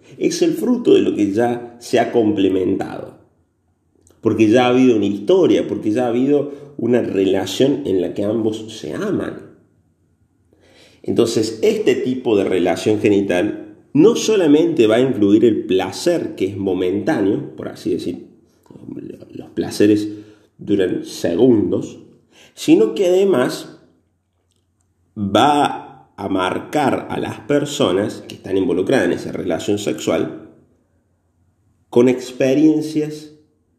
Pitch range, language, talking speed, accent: 95-145 Hz, Spanish, 125 wpm, Argentinian